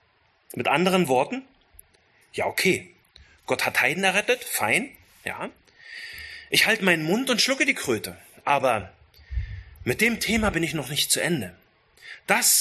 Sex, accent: male, German